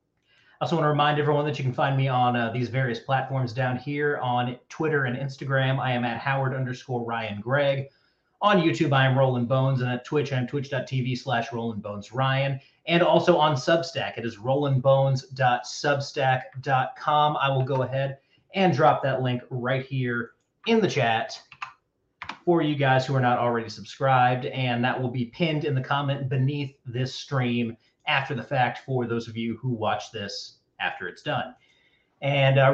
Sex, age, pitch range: male, 30-49, 125-140 Hz